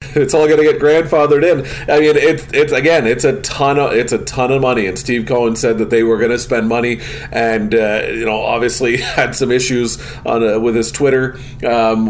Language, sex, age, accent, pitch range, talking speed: English, male, 40-59, American, 125-165 Hz, 230 wpm